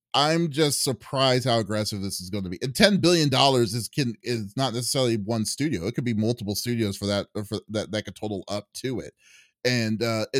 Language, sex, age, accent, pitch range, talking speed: English, male, 30-49, American, 105-125 Hz, 225 wpm